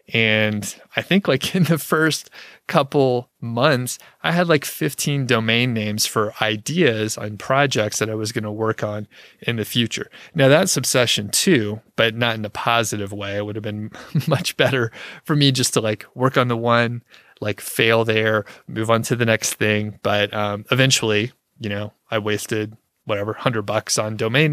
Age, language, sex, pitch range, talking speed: 30-49, English, male, 105-130 Hz, 185 wpm